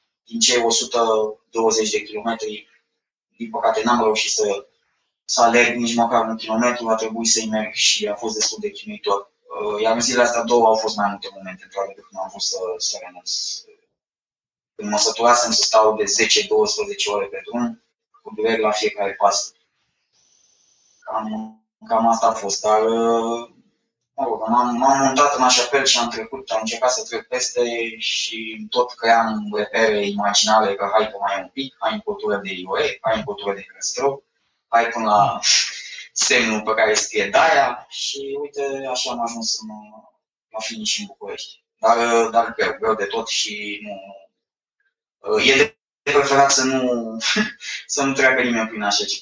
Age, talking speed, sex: 20-39, 165 wpm, male